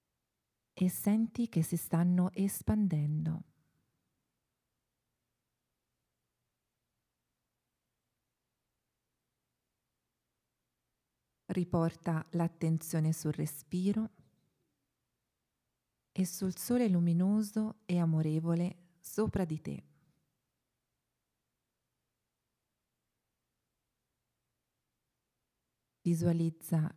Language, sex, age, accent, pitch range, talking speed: Italian, female, 40-59, native, 150-185 Hz, 45 wpm